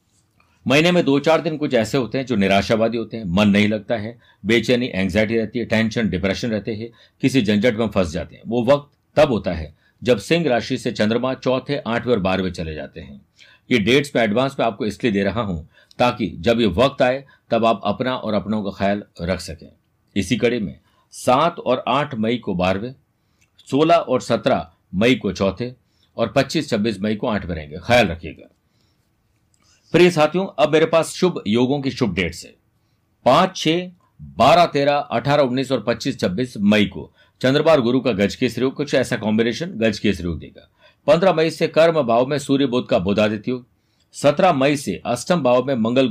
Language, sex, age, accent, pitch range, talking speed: Hindi, male, 60-79, native, 105-140 Hz, 190 wpm